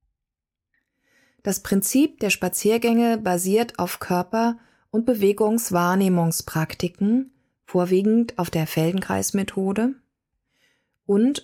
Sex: female